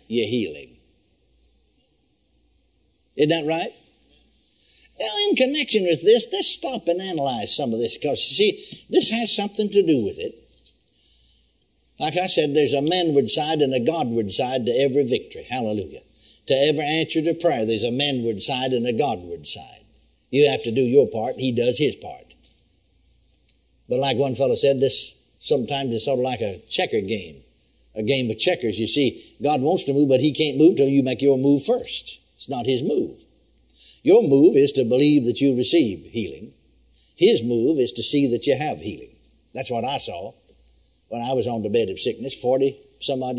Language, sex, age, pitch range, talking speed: English, male, 60-79, 110-160 Hz, 185 wpm